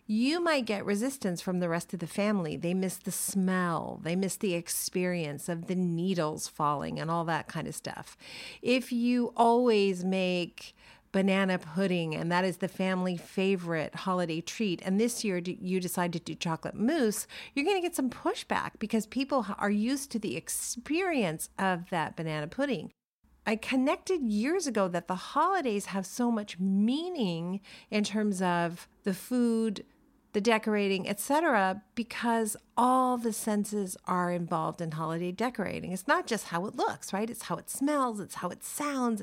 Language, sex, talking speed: English, female, 170 wpm